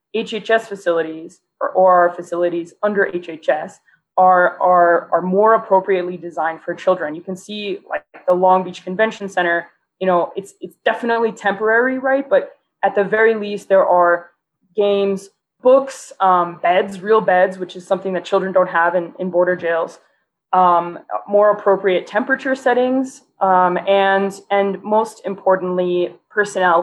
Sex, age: female, 20-39